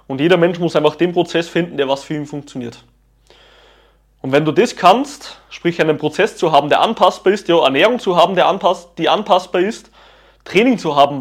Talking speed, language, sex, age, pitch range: 205 wpm, German, male, 20-39, 145-185 Hz